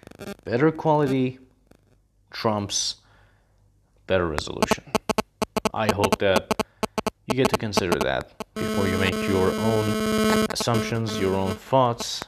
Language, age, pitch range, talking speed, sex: English, 30-49, 100-125 Hz, 110 wpm, male